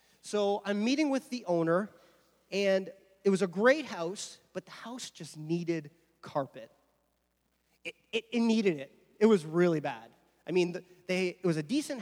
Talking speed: 170 wpm